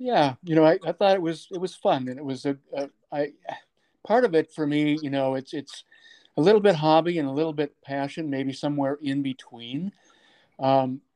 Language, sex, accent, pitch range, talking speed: English, male, American, 130-150 Hz, 210 wpm